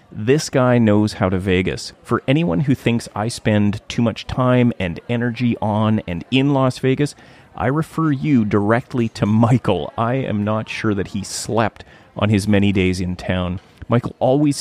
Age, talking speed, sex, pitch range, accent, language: 30-49, 175 wpm, male, 100-130 Hz, American, English